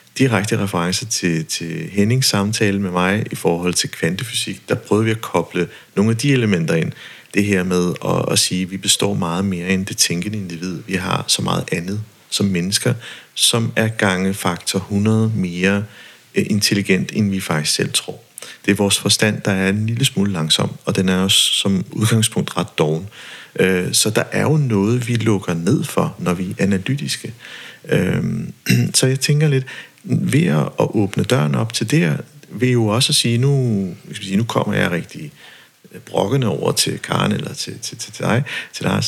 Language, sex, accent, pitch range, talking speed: Danish, male, native, 95-125 Hz, 185 wpm